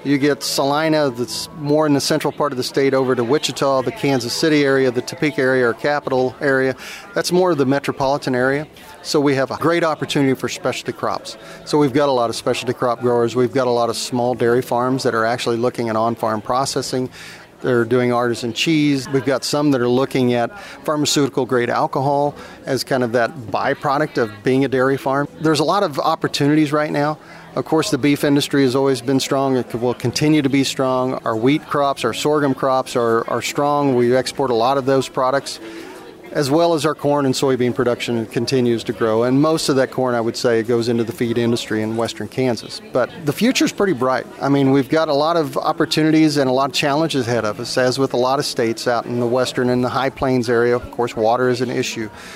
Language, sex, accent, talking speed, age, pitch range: English, male, American, 225 wpm, 40-59, 120-145 Hz